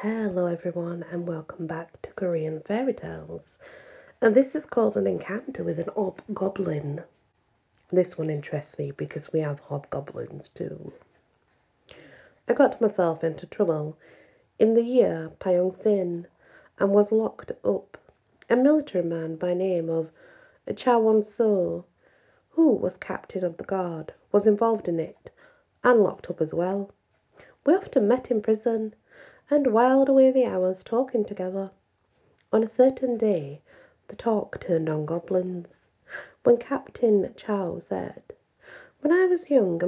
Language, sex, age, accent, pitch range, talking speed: English, female, 40-59, British, 170-240 Hz, 140 wpm